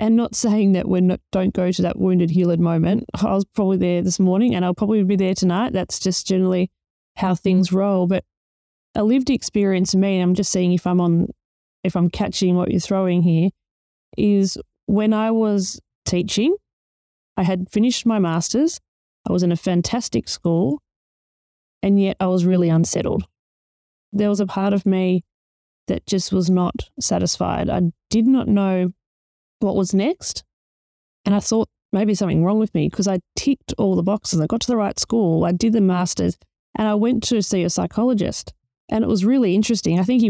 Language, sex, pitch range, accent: English, female, 180-215 Hz, Australian